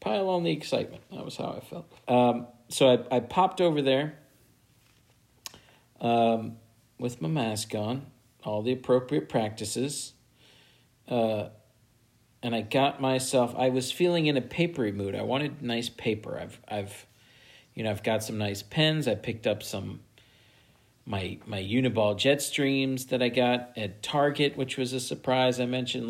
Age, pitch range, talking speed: 50-69, 110-130 Hz, 160 wpm